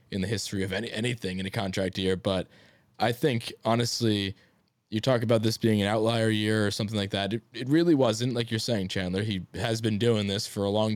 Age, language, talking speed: 20-39, English, 230 wpm